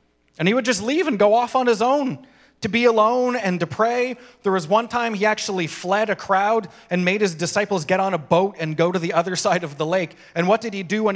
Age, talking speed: 30-49, 265 wpm